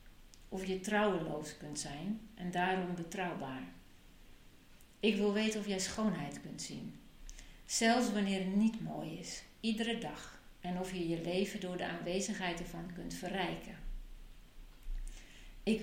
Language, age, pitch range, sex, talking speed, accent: Dutch, 50-69, 180-210 Hz, female, 135 wpm, Dutch